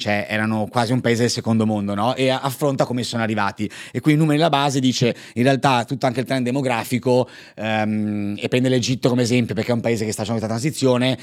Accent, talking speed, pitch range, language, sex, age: native, 230 wpm, 110-130 Hz, Italian, male, 30-49